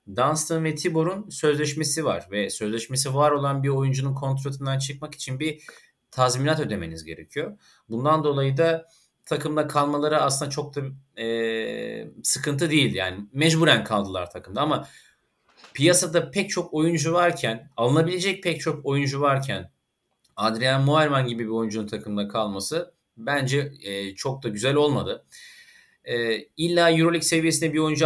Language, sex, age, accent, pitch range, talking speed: Turkish, male, 30-49, native, 125-155 Hz, 135 wpm